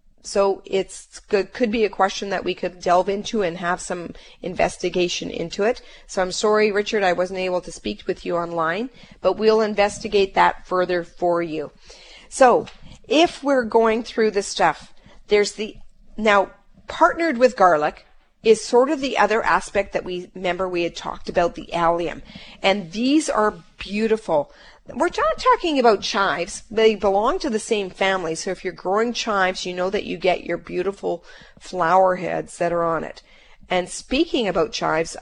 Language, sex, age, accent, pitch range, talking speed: English, female, 40-59, American, 180-220 Hz, 175 wpm